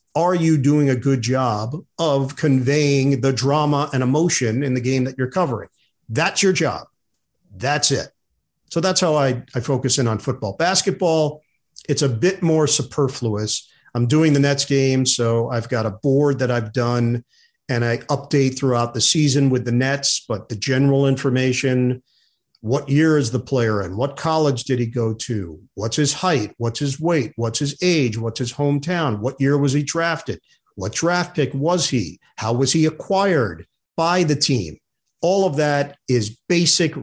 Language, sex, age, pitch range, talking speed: English, male, 50-69, 120-150 Hz, 180 wpm